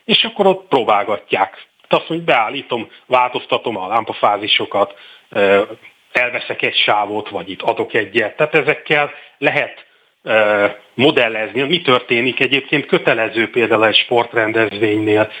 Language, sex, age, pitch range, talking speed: Hungarian, male, 30-49, 110-155 Hz, 115 wpm